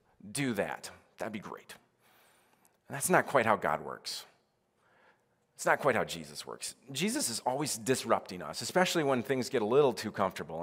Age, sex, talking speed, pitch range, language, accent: 30-49, male, 175 wpm, 110-140 Hz, English, American